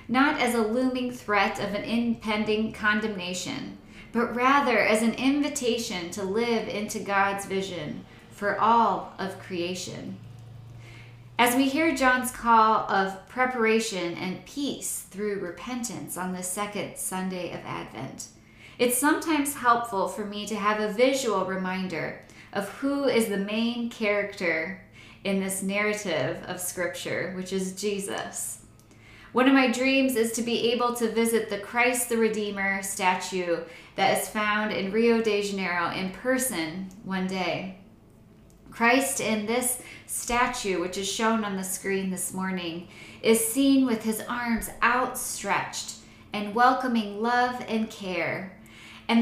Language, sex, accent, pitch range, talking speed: English, female, American, 185-235 Hz, 140 wpm